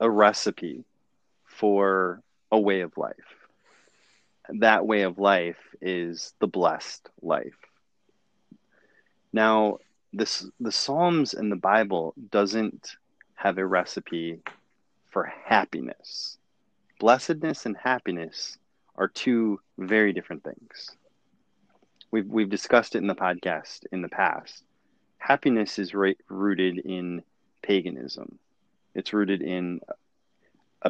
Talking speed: 110 wpm